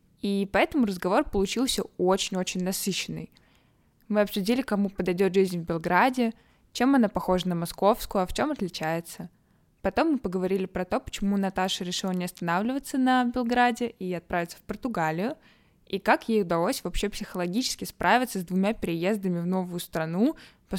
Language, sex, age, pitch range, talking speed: Russian, female, 20-39, 180-215 Hz, 150 wpm